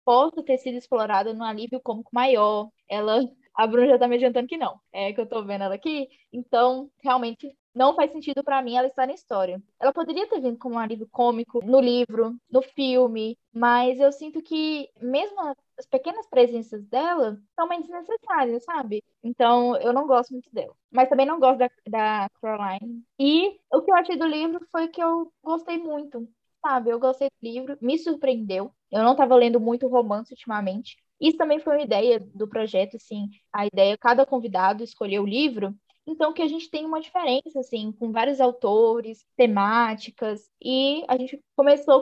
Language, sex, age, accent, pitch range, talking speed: Portuguese, female, 10-29, Brazilian, 225-280 Hz, 185 wpm